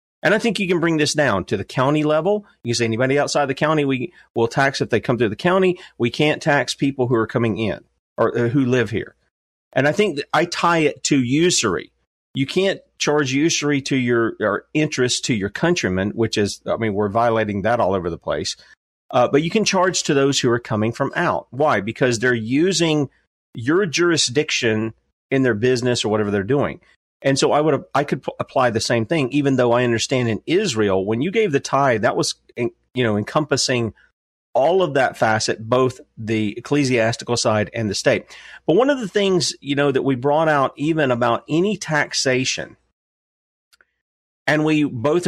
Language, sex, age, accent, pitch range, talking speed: English, male, 40-59, American, 115-150 Hz, 200 wpm